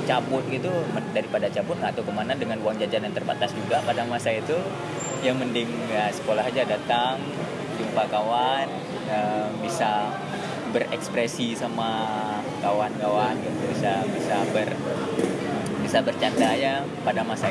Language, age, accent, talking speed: Indonesian, 20-39, native, 130 wpm